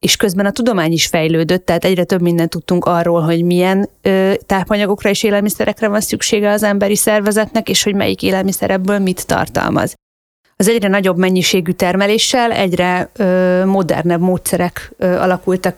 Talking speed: 150 wpm